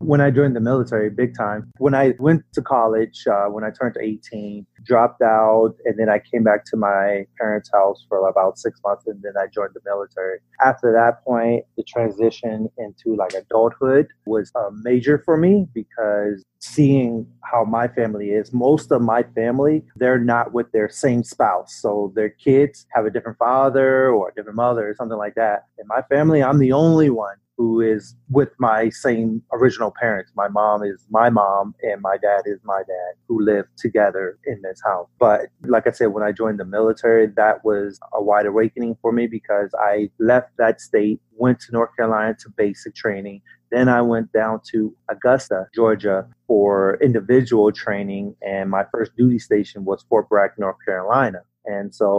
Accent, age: American, 30-49